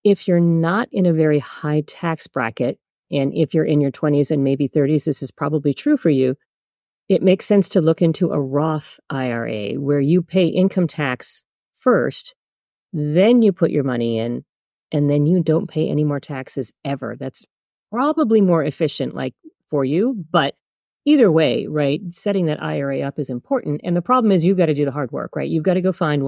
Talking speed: 200 wpm